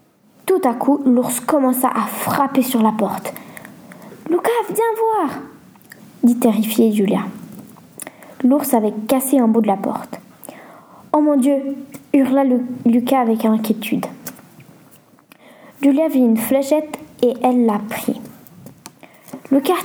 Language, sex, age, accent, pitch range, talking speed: French, female, 10-29, French, 220-270 Hz, 120 wpm